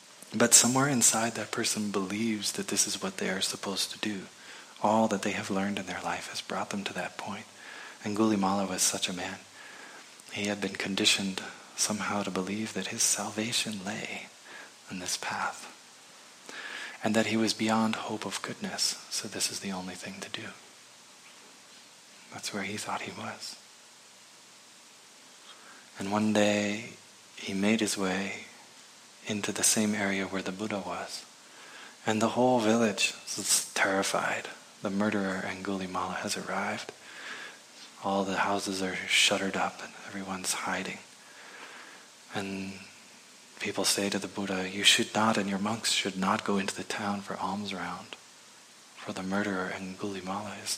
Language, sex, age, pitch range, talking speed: English, male, 20-39, 95-110 Hz, 160 wpm